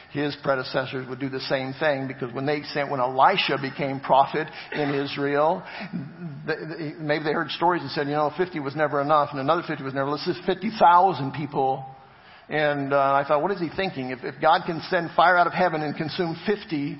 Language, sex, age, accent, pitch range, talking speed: English, male, 50-69, American, 150-210 Hz, 205 wpm